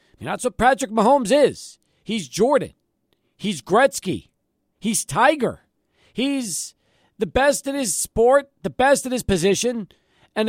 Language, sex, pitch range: English, male, 185-265 Hz